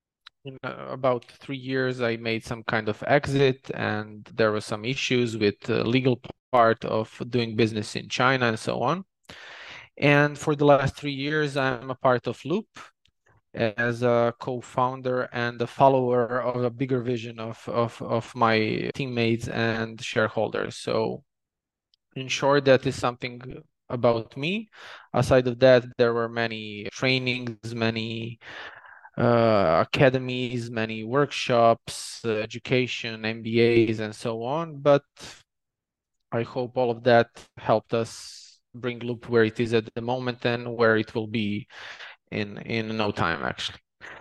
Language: English